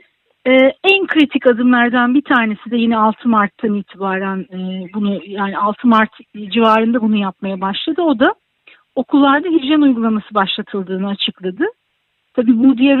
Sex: female